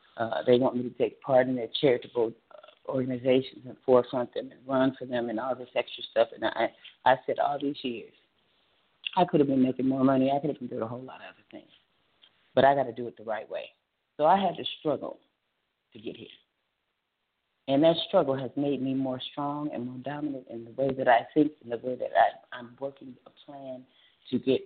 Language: English